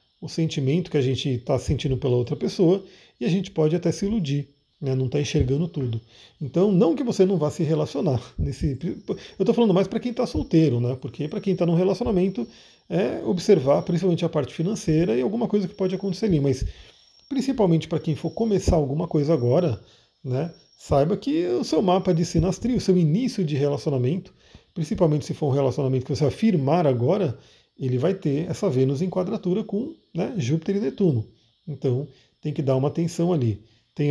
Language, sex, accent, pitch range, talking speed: Portuguese, male, Brazilian, 140-190 Hz, 195 wpm